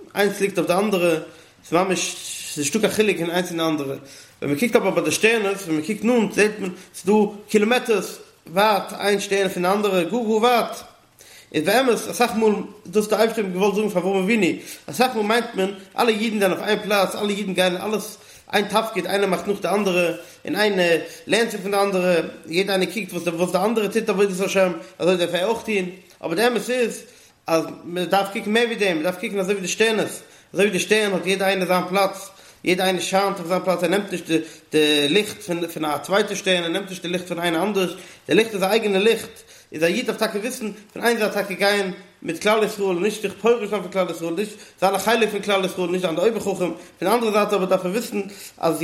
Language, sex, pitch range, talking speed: English, male, 180-215 Hz, 250 wpm